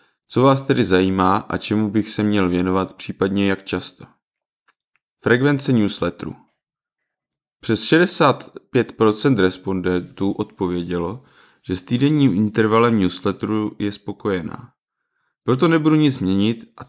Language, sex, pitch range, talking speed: Czech, male, 95-120 Hz, 110 wpm